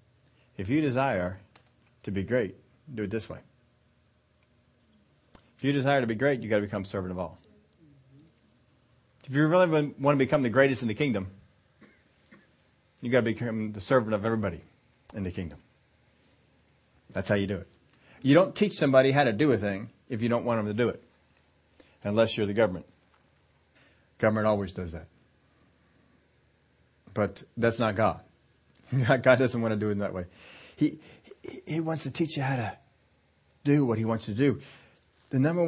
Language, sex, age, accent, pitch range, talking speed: English, male, 40-59, American, 100-135 Hz, 175 wpm